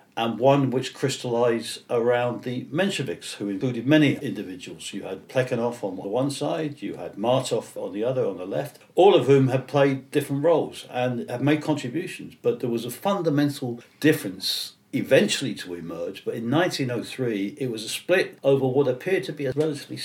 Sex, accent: male, British